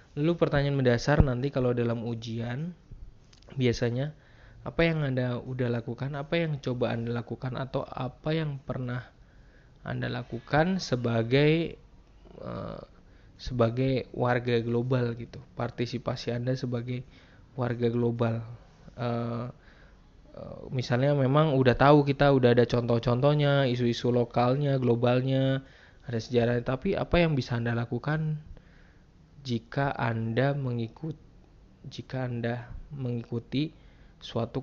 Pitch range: 115-135 Hz